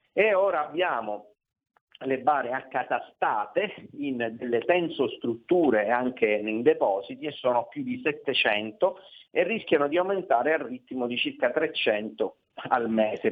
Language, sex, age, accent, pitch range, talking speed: Italian, male, 40-59, native, 115-140 Hz, 130 wpm